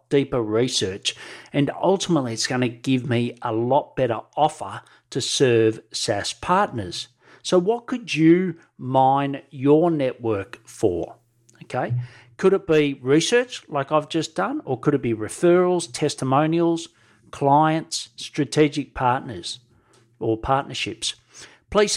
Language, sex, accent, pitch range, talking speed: English, male, Australian, 125-160 Hz, 125 wpm